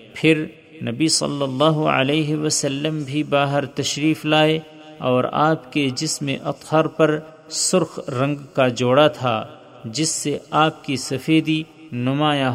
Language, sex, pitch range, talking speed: Urdu, male, 135-155 Hz, 130 wpm